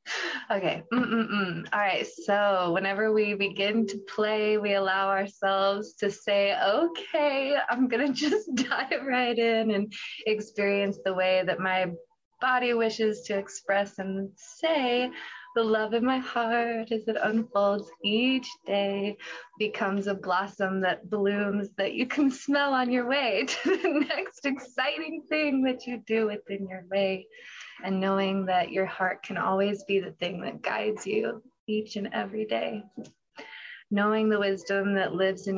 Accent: American